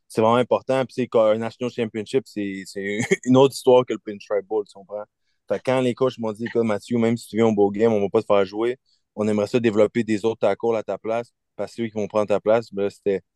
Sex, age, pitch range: male, 20-39, 100-120 Hz